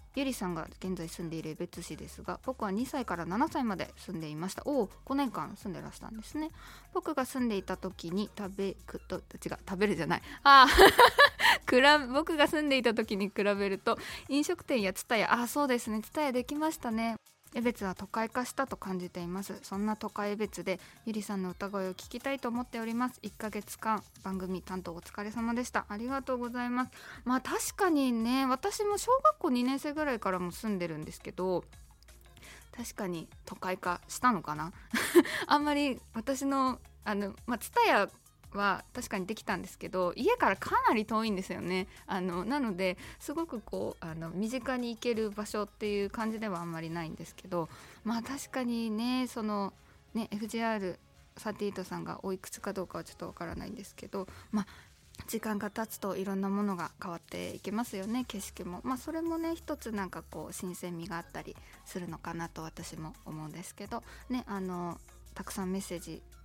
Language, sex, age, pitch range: Japanese, female, 20-39, 185-250 Hz